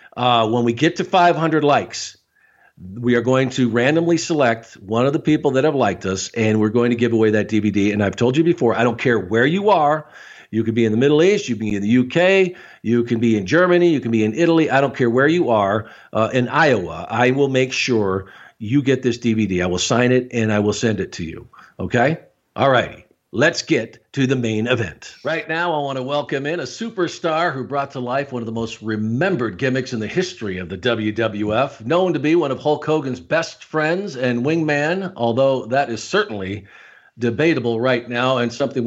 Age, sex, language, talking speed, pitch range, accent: 50-69, male, English, 225 wpm, 115-150 Hz, American